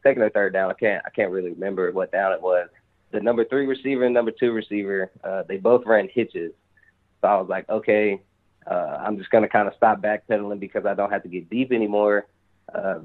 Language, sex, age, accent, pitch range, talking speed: English, male, 20-39, American, 100-115 Hz, 225 wpm